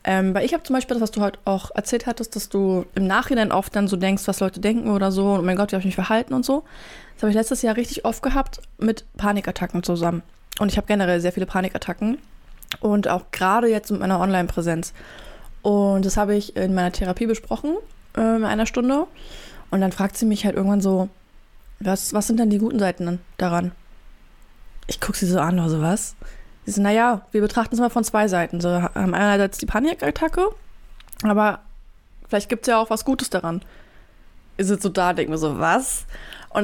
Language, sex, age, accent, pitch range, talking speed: German, female, 20-39, German, 190-240 Hz, 210 wpm